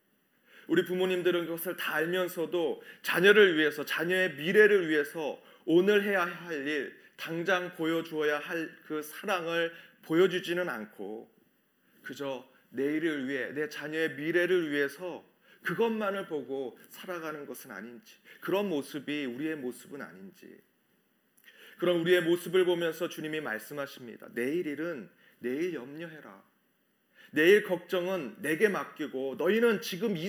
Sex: male